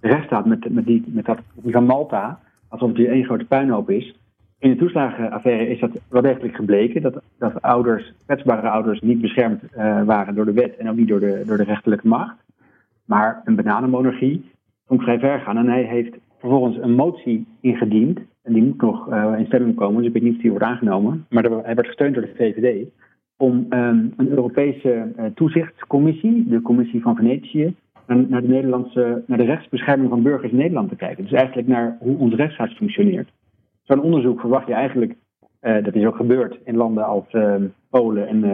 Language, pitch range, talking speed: Dutch, 110-130 Hz, 200 wpm